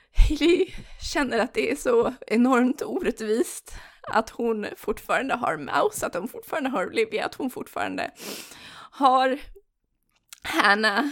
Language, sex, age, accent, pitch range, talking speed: Swedish, female, 20-39, native, 205-280 Hz, 125 wpm